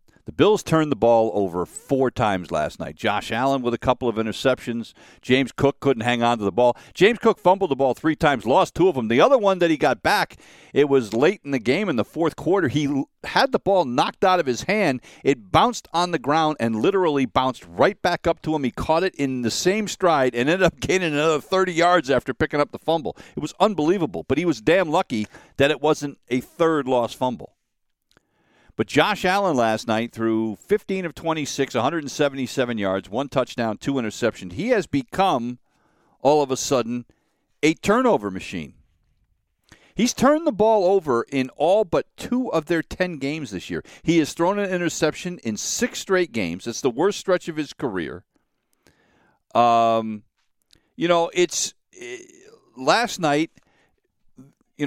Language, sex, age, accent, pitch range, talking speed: English, male, 50-69, American, 120-180 Hz, 190 wpm